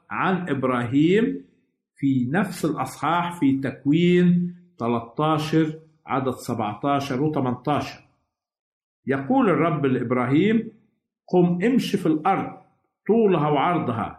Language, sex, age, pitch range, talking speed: Arabic, male, 50-69, 130-175 Hz, 85 wpm